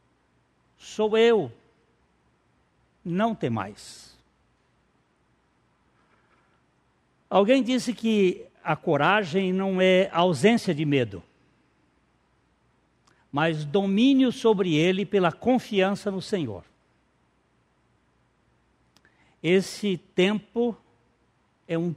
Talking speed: 75 wpm